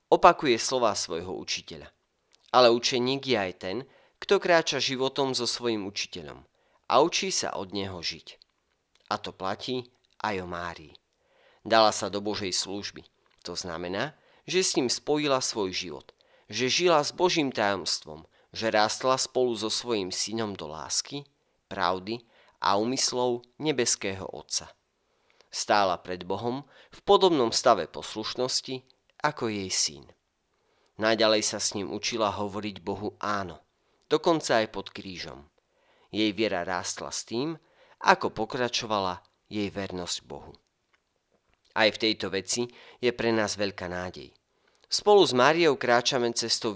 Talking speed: 135 wpm